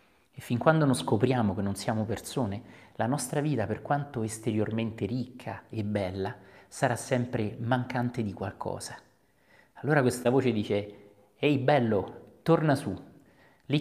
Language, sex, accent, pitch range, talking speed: Italian, male, native, 100-125 Hz, 140 wpm